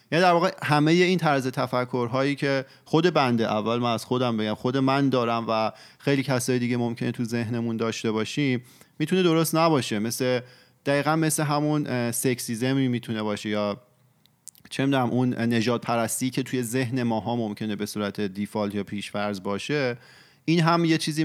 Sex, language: male, Persian